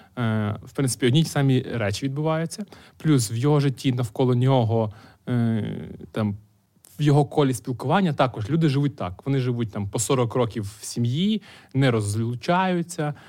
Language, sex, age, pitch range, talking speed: Ukrainian, male, 20-39, 115-140 Hz, 150 wpm